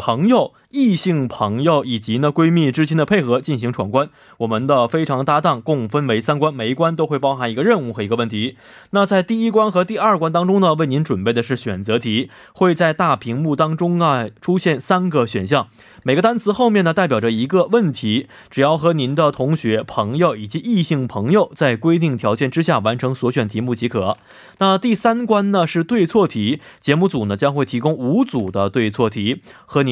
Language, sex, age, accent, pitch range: Korean, male, 20-39, Chinese, 120-175 Hz